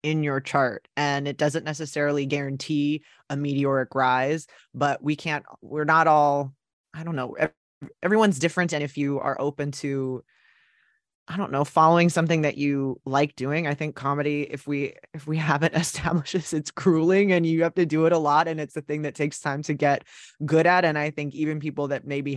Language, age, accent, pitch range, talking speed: English, 20-39, American, 135-155 Hz, 200 wpm